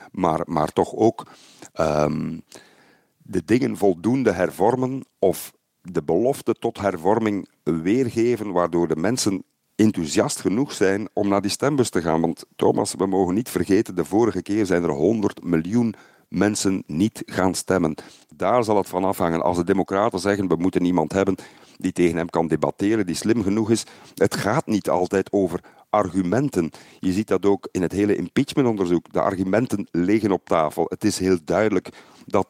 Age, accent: 50-69, Belgian